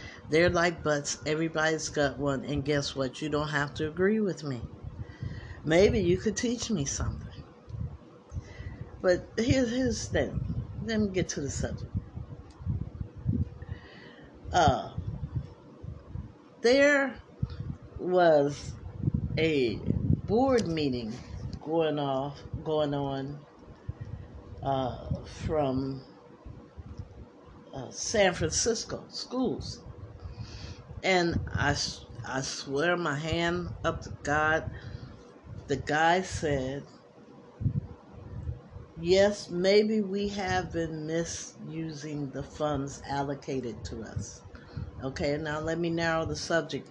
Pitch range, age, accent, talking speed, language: 120-165 Hz, 60-79, American, 100 wpm, English